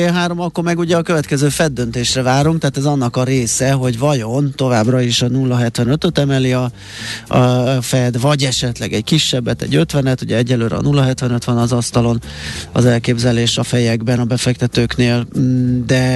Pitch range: 115-135 Hz